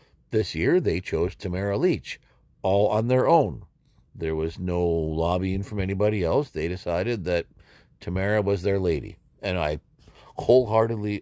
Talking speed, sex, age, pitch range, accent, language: 145 wpm, male, 50-69, 85-110 Hz, American, English